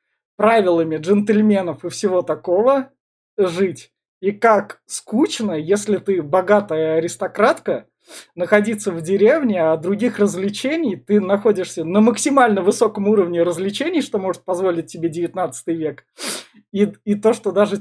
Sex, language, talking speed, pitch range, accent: male, Russian, 125 wpm, 165-210 Hz, native